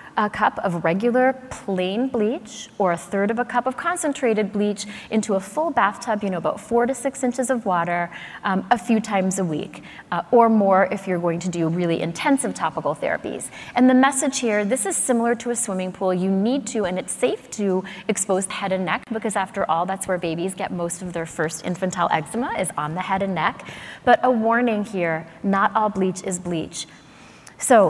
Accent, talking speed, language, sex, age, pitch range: American, 210 wpm, English, female, 30-49, 180-225 Hz